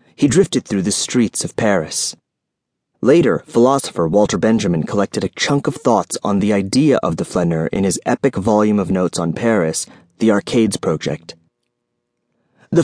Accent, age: American, 30-49